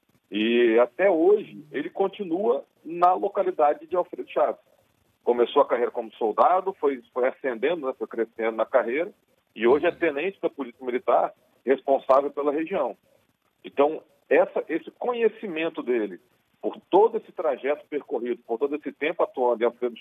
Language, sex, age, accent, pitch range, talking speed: Portuguese, male, 40-59, Brazilian, 125-195 Hz, 150 wpm